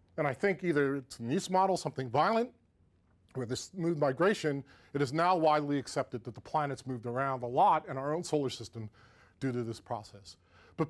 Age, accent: 40-59, American